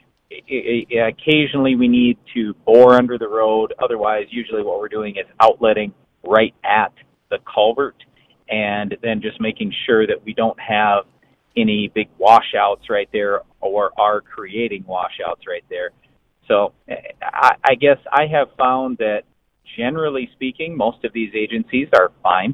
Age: 40-59